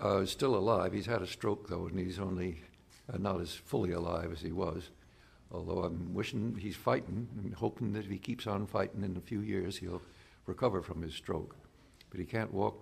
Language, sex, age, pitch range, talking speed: English, male, 60-79, 95-120 Hz, 210 wpm